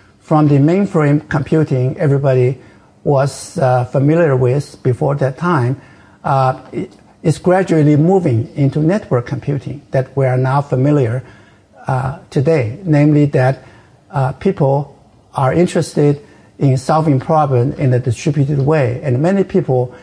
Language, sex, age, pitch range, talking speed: English, male, 60-79, 130-160 Hz, 125 wpm